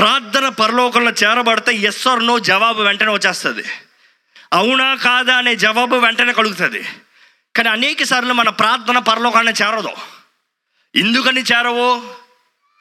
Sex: male